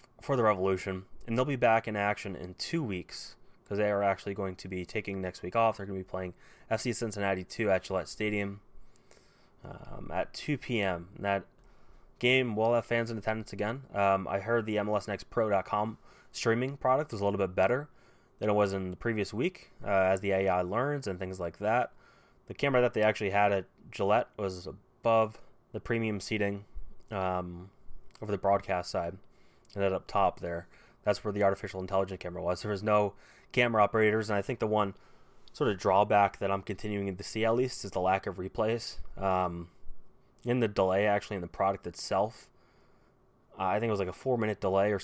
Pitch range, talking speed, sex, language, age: 95-110 Hz, 200 wpm, male, English, 20-39